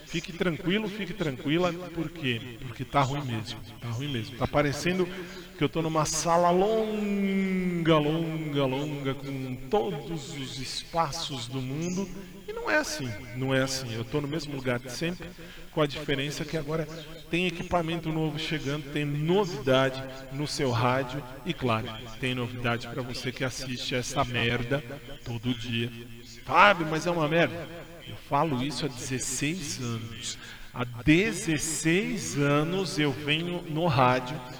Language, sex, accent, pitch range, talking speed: Portuguese, male, Brazilian, 125-165 Hz, 150 wpm